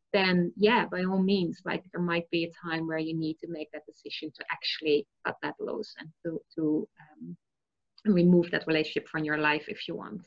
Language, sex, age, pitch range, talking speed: English, female, 30-49, 175-225 Hz, 210 wpm